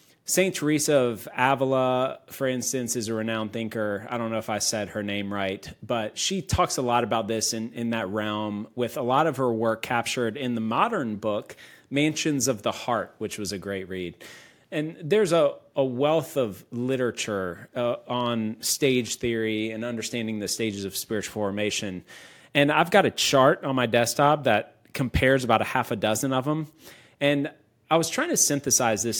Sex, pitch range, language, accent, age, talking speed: male, 110-150 Hz, English, American, 30-49, 190 wpm